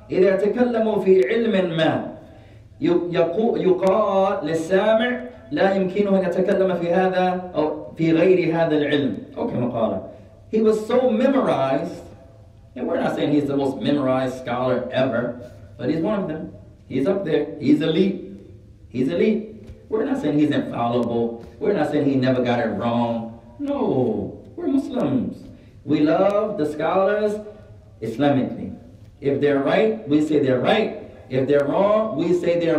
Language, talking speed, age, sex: English, 115 wpm, 30-49, male